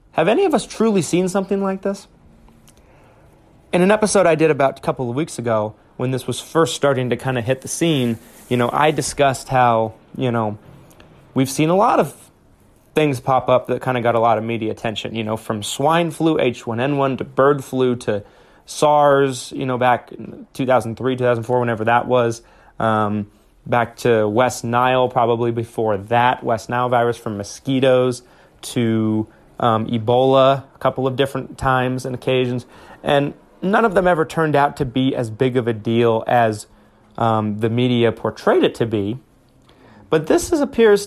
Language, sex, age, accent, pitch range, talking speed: English, male, 30-49, American, 115-150 Hz, 180 wpm